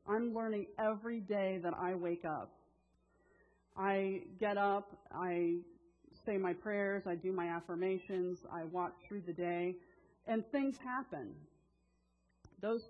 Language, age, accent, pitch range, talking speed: English, 40-59, American, 155-200 Hz, 130 wpm